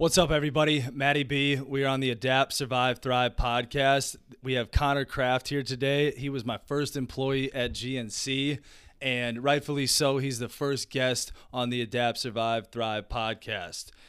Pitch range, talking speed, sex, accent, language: 120-135 Hz, 165 wpm, male, American, English